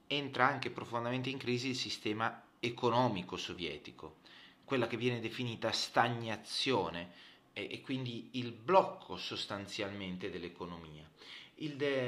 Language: Italian